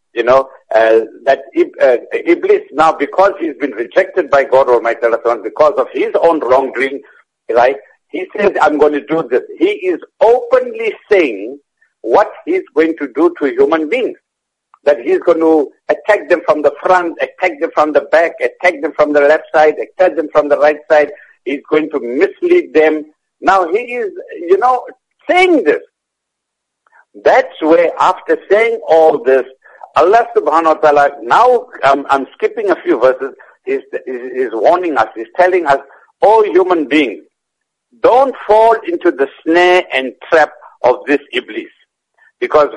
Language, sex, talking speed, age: English, male, 165 wpm, 60-79